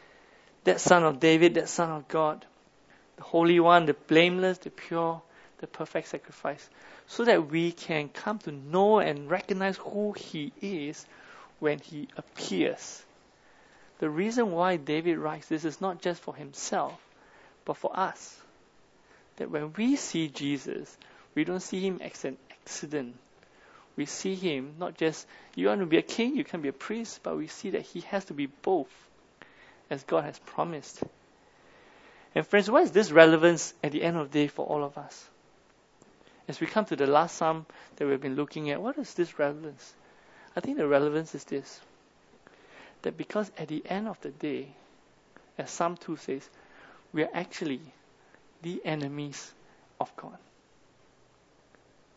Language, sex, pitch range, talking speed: English, male, 150-185 Hz, 170 wpm